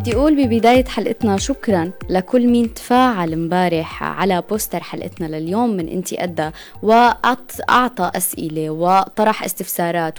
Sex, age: female, 20-39